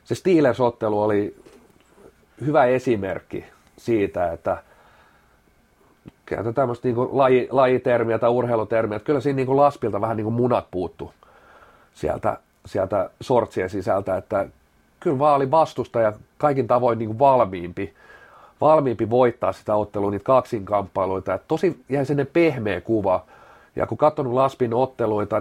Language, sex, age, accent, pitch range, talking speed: Finnish, male, 40-59, native, 110-135 Hz, 130 wpm